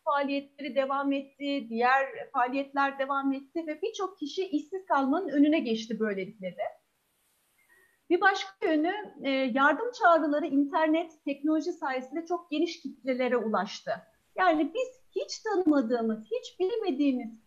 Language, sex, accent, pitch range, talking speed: Turkish, female, native, 260-335 Hz, 115 wpm